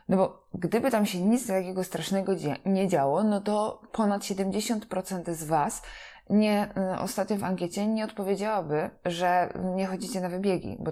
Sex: female